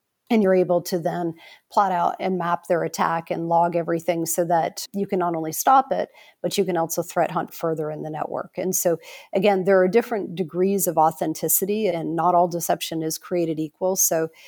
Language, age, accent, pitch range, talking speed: English, 40-59, American, 165-195 Hz, 205 wpm